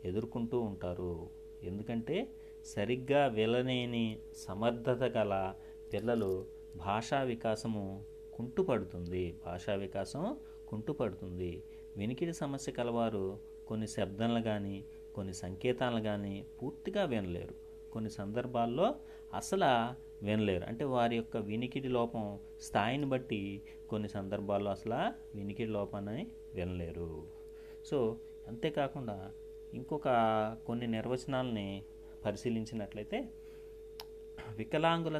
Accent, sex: native, male